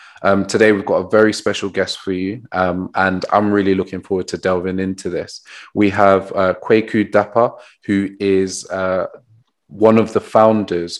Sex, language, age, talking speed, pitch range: male, English, 20-39, 175 wpm, 95-105 Hz